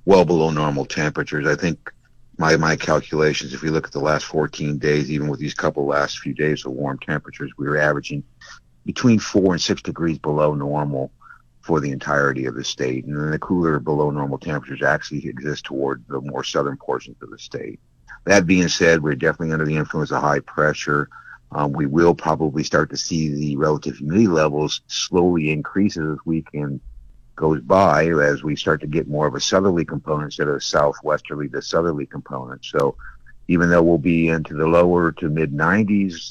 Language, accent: English, American